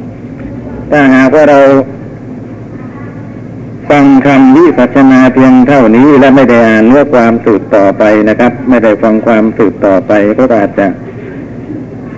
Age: 60-79